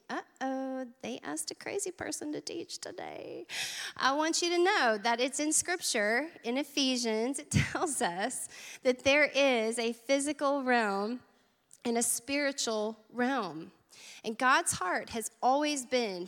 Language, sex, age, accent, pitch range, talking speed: English, female, 30-49, American, 210-260 Hz, 145 wpm